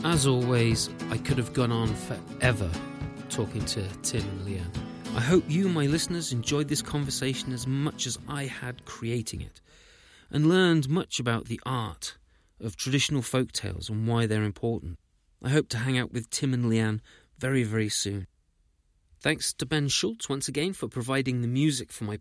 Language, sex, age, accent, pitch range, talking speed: English, male, 30-49, British, 105-145 Hz, 175 wpm